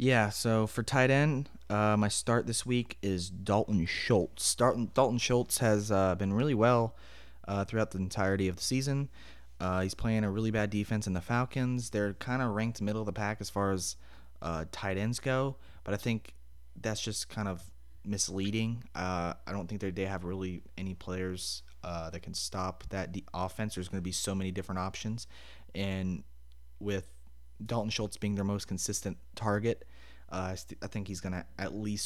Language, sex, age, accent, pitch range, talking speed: English, male, 20-39, American, 90-105 Hz, 190 wpm